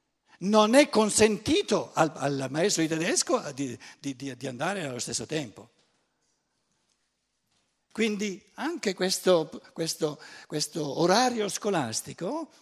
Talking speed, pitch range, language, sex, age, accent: 95 wpm, 150-235 Hz, Italian, male, 60-79, native